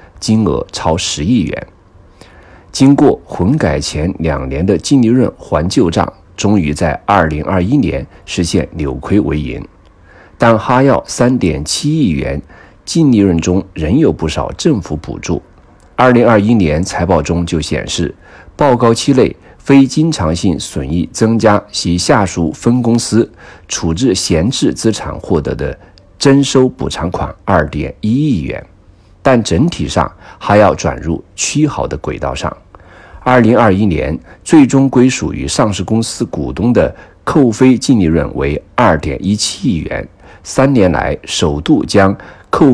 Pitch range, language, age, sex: 85-115 Hz, Chinese, 50-69, male